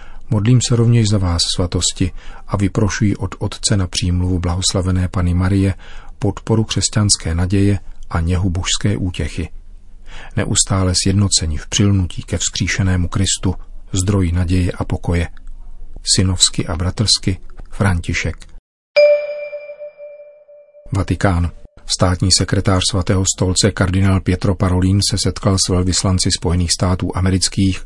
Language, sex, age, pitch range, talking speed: Czech, male, 40-59, 90-100 Hz, 110 wpm